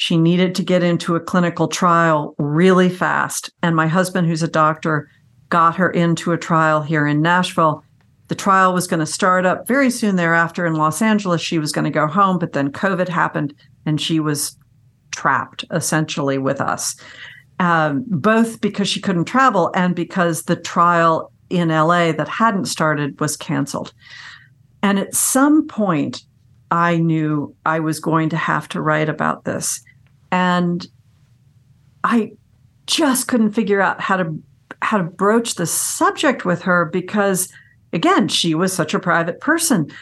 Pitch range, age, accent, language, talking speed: 155-200 Hz, 50-69, American, English, 165 wpm